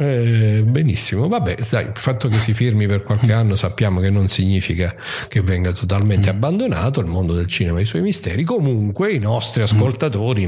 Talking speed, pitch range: 180 wpm, 95-120 Hz